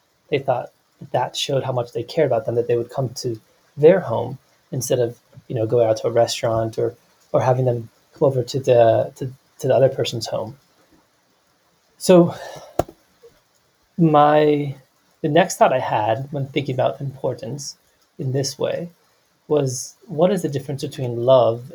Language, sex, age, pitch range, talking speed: English, male, 30-49, 125-150 Hz, 170 wpm